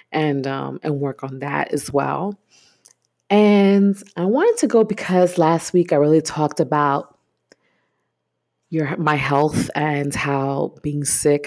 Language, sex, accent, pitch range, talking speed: English, female, American, 145-180 Hz, 140 wpm